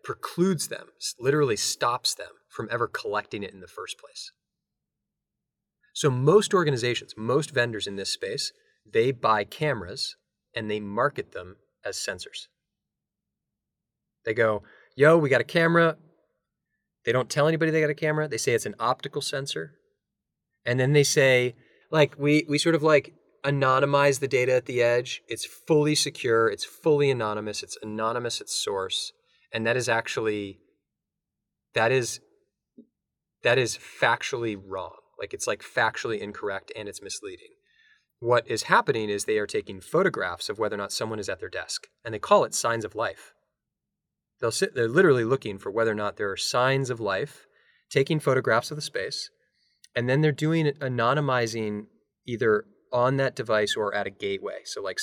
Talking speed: 165 wpm